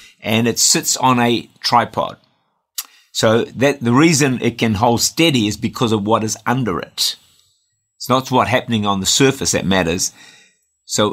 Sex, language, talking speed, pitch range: male, English, 165 wpm, 105-140 Hz